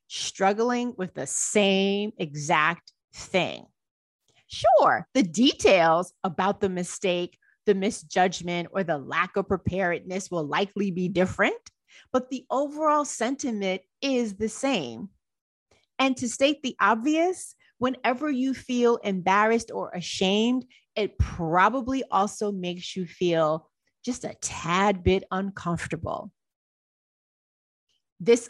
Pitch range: 175-235 Hz